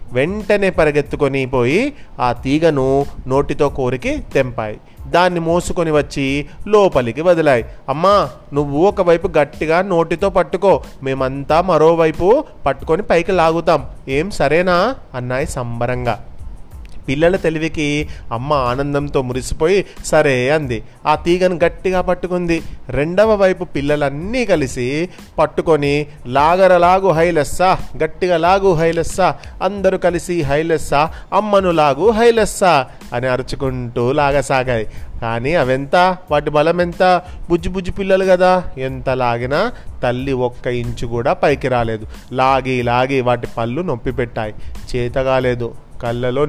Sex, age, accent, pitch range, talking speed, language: male, 30-49, native, 130-170 Hz, 105 wpm, Telugu